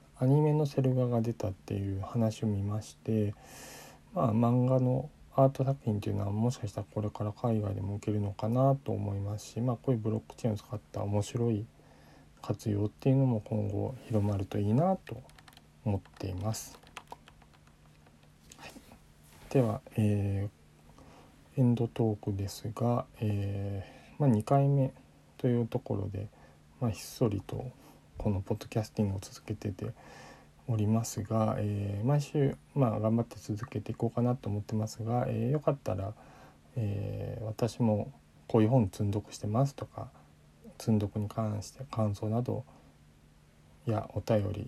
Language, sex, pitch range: Japanese, male, 105-125 Hz